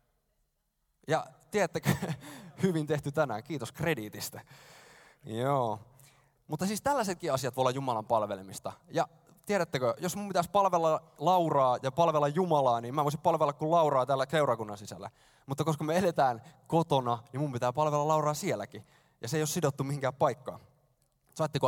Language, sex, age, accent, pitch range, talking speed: Finnish, male, 20-39, native, 125-165 Hz, 150 wpm